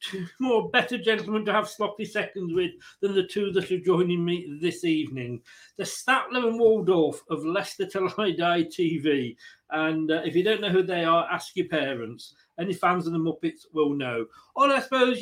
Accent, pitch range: British, 165-225 Hz